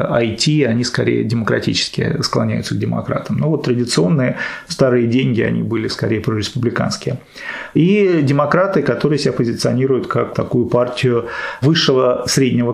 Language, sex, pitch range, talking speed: Russian, male, 120-150 Hz, 120 wpm